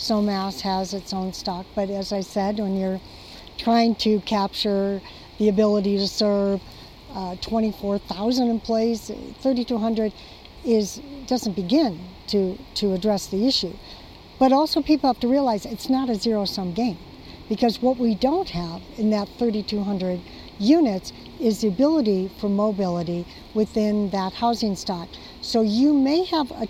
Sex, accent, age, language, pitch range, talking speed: female, American, 60-79, English, 200-255 Hz, 140 wpm